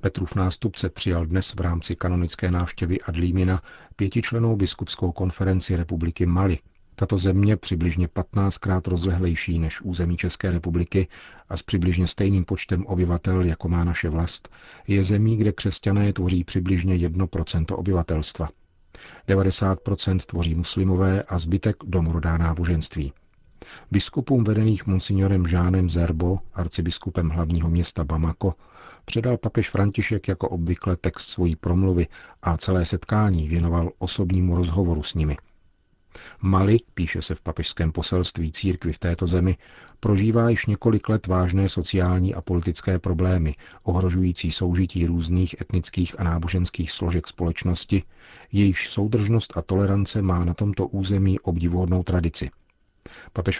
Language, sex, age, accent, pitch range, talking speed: Czech, male, 40-59, native, 85-95 Hz, 125 wpm